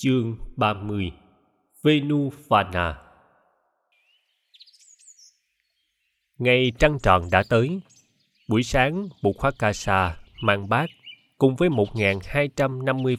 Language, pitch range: Vietnamese, 95-135 Hz